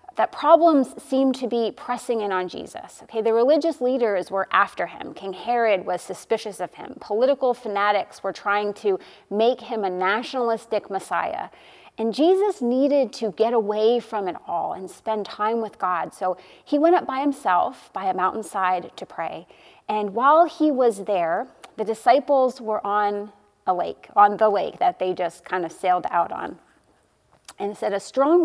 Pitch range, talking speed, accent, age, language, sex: 205-265 Hz, 175 wpm, American, 30-49, English, female